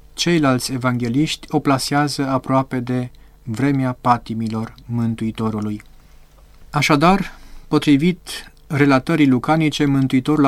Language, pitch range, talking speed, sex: Romanian, 125-150 Hz, 80 wpm, male